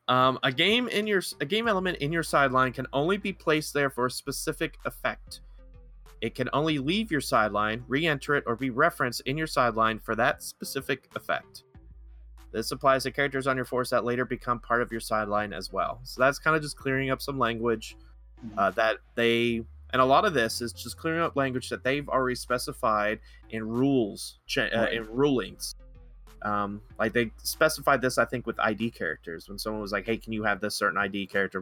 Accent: American